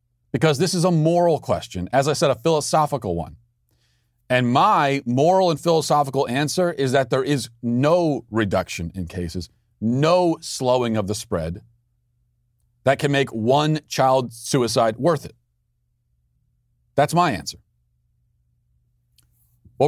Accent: American